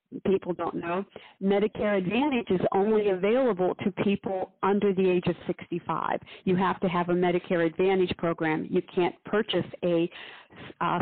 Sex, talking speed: female, 150 wpm